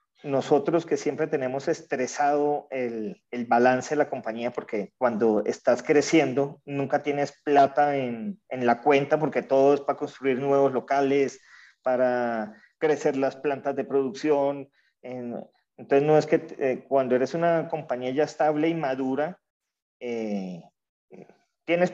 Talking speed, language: 135 wpm, Spanish